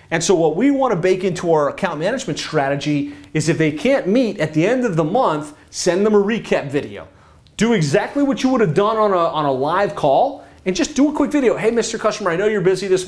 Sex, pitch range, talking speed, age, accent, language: male, 150-190 Hz, 250 wpm, 30-49, American, English